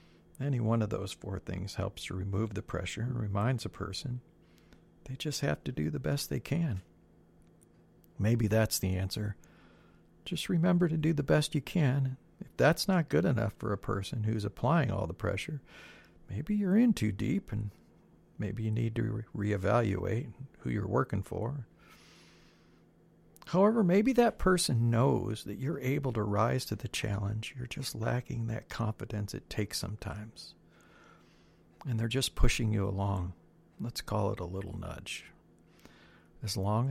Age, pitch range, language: 50-69, 100-130 Hz, English